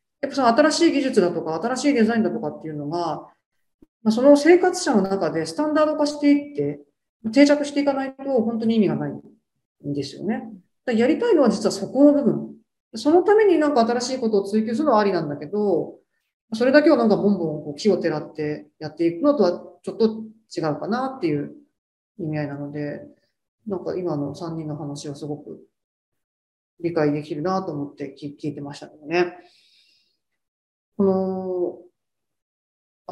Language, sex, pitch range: Japanese, female, 155-240 Hz